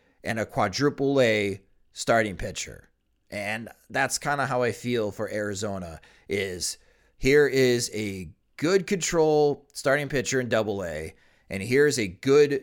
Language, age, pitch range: English, 30-49, 120-165 Hz